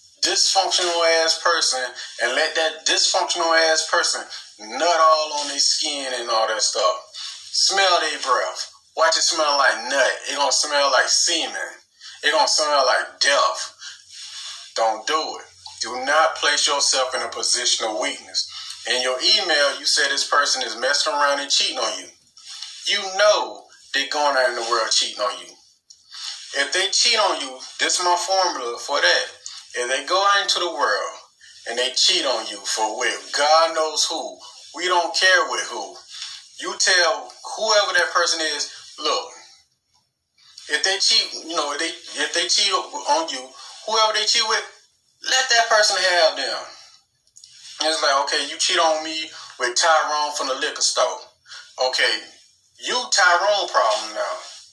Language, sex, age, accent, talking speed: English, male, 30-49, American, 165 wpm